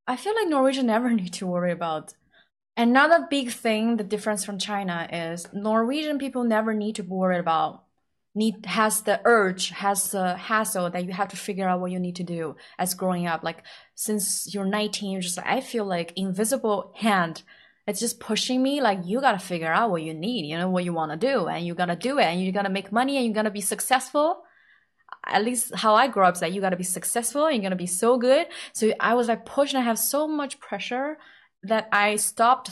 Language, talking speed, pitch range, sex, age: English, 225 wpm, 185-240 Hz, female, 20-39